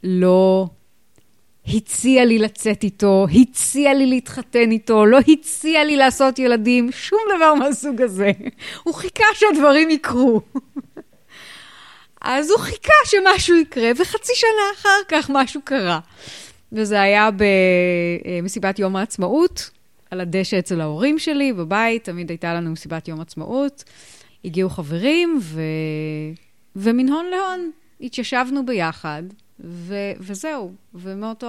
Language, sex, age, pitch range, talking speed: Hebrew, female, 30-49, 175-270 Hz, 115 wpm